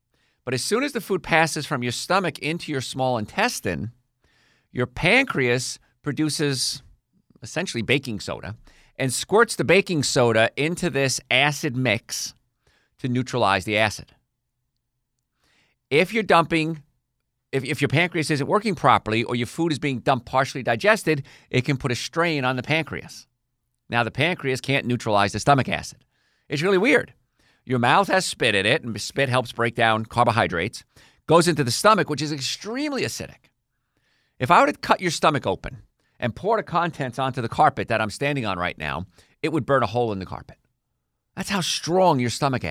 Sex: male